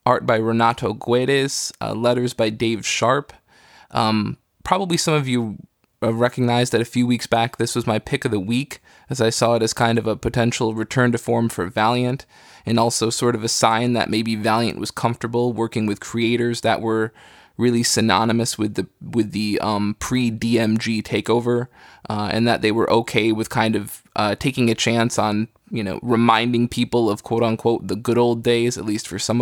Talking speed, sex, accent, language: 195 wpm, male, American, English